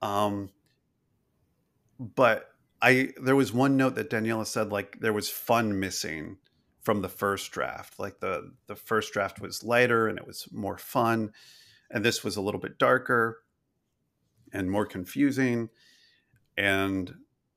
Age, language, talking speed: 40-59, English, 145 wpm